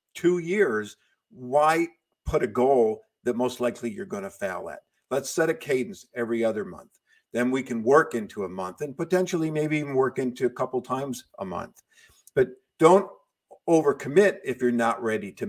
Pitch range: 115-160 Hz